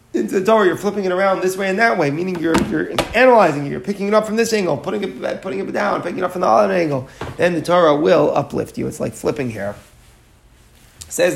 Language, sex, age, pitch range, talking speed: English, male, 30-49, 130-175 Hz, 250 wpm